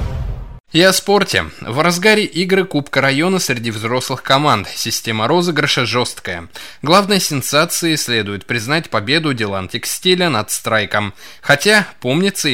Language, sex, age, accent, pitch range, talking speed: Russian, male, 20-39, native, 110-170 Hz, 120 wpm